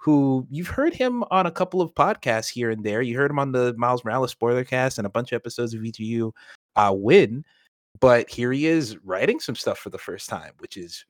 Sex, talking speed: male, 230 wpm